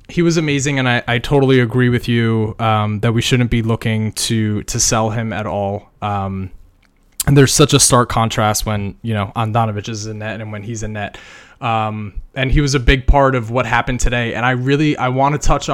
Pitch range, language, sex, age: 115-145 Hz, English, male, 20-39